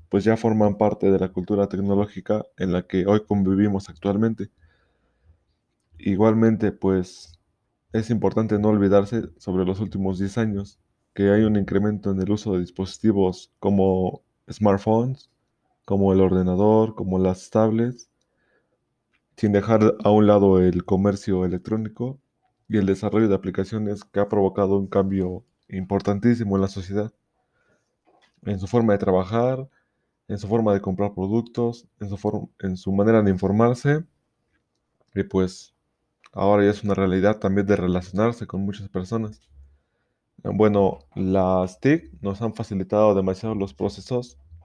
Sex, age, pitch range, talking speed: male, 20-39, 95-110 Hz, 140 wpm